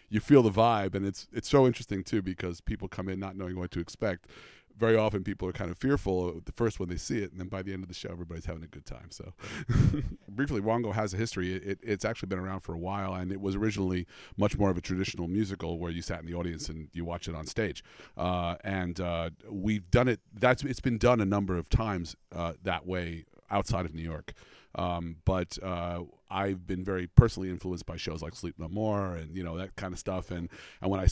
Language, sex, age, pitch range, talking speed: English, male, 40-59, 90-110 Hz, 245 wpm